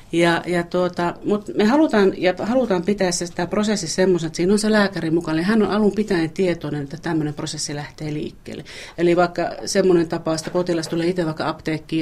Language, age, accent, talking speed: Finnish, 40-59, native, 200 wpm